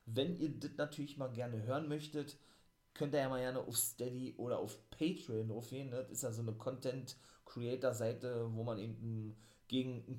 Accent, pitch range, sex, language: German, 110-130 Hz, male, German